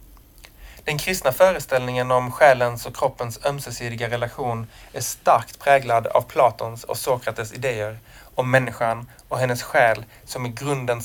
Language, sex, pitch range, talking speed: Swedish, male, 115-135 Hz, 135 wpm